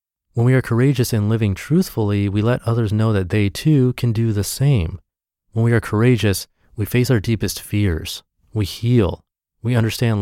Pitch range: 90-115 Hz